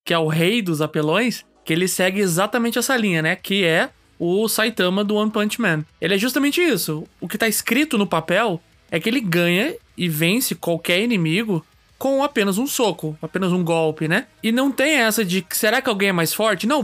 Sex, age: male, 20-39